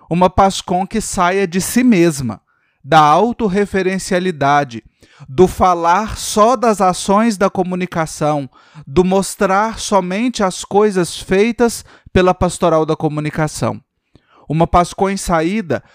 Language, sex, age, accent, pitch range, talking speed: Portuguese, male, 30-49, Brazilian, 155-195 Hz, 115 wpm